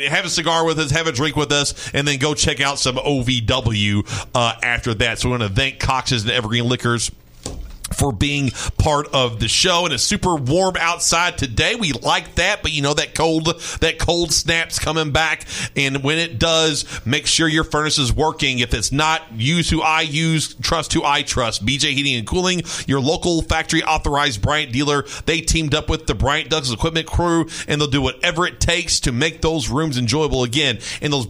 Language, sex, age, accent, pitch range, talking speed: English, male, 40-59, American, 125-165 Hz, 205 wpm